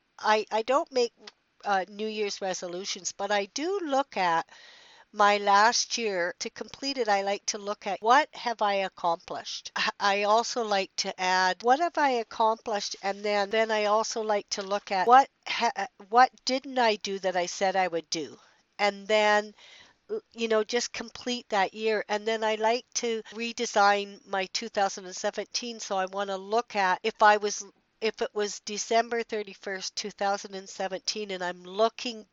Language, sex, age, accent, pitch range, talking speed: English, female, 60-79, American, 190-230 Hz, 170 wpm